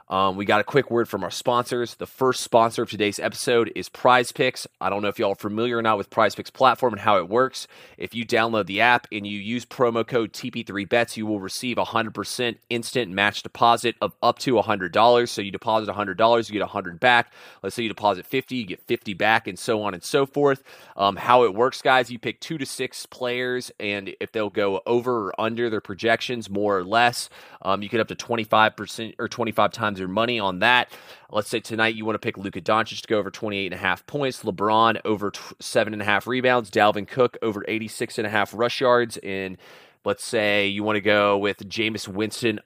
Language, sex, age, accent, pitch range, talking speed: English, male, 30-49, American, 105-120 Hz, 235 wpm